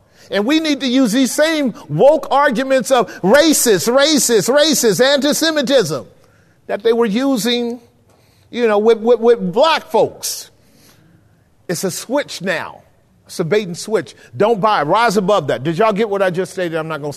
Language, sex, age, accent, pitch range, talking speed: English, male, 50-69, American, 165-240 Hz, 170 wpm